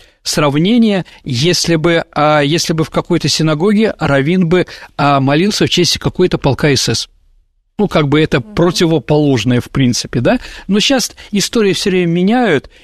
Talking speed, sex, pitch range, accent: 140 wpm, male, 140-185 Hz, native